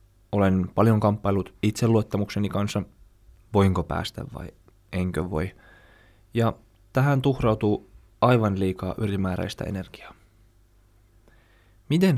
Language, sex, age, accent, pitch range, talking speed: Finnish, male, 20-39, native, 95-115 Hz, 90 wpm